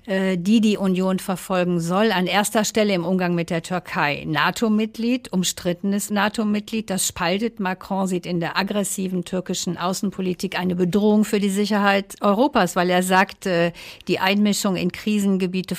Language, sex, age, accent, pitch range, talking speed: German, female, 50-69, German, 175-205 Hz, 145 wpm